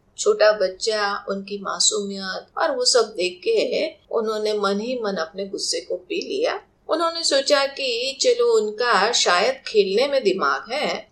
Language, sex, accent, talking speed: Hindi, female, native, 150 wpm